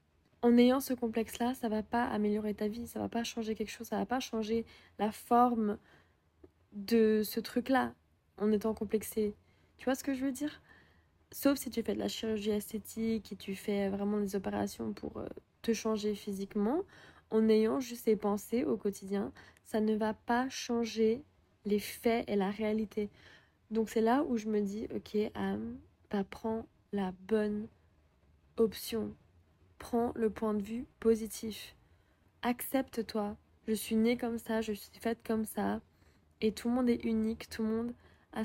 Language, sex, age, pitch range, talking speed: English, female, 20-39, 210-230 Hz, 175 wpm